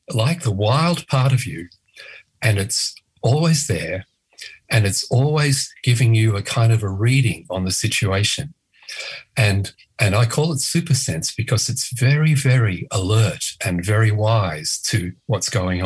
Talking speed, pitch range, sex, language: 155 wpm, 105-135 Hz, male, English